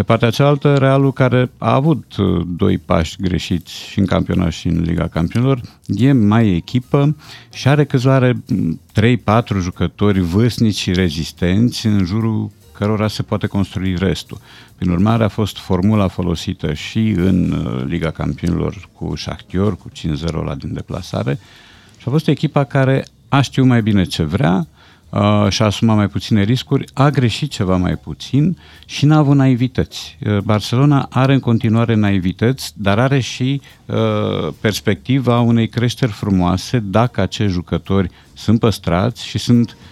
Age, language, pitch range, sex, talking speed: 50-69, Romanian, 90-120 Hz, male, 150 wpm